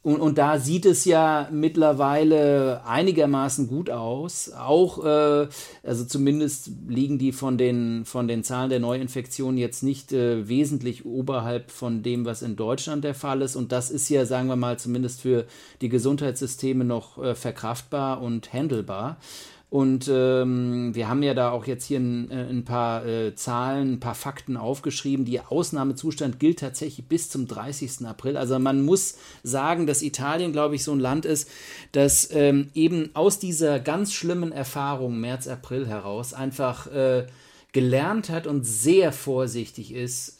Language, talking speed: German, 160 wpm